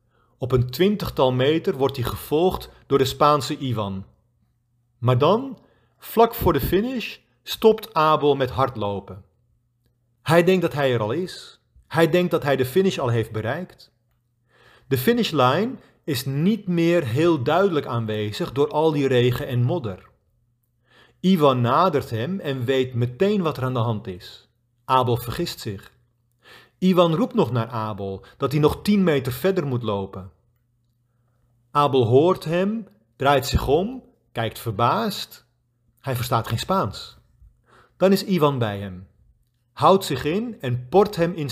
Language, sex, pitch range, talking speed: Dutch, male, 120-165 Hz, 150 wpm